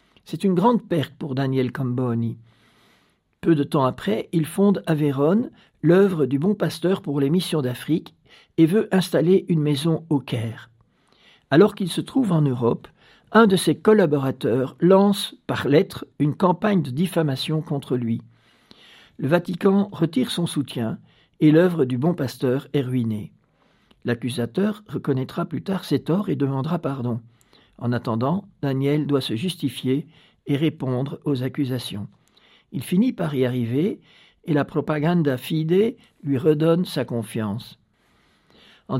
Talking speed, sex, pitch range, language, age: 145 wpm, male, 130-180 Hz, French, 60-79